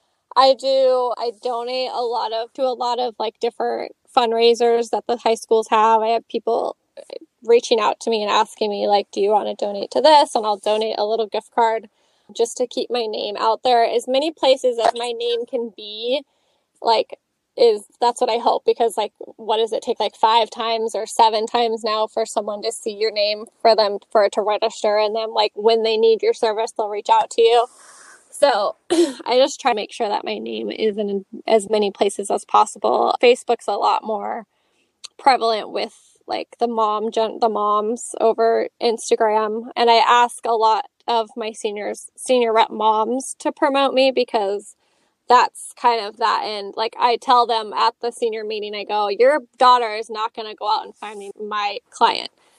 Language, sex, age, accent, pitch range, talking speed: English, female, 10-29, American, 220-255 Hz, 200 wpm